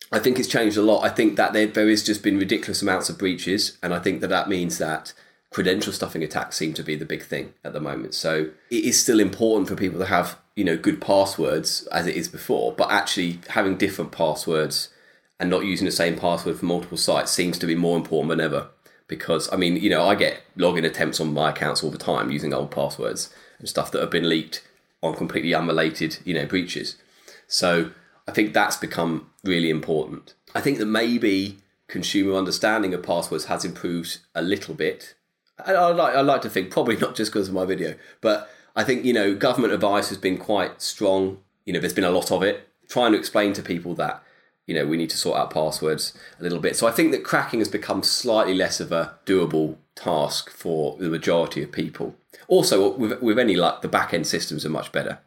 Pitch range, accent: 80-100 Hz, British